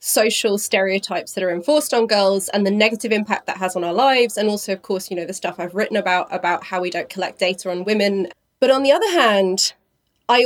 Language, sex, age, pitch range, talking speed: English, female, 20-39, 185-225 Hz, 235 wpm